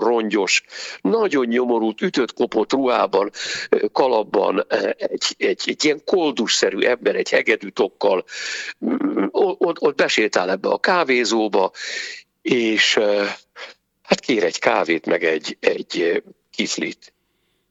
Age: 60-79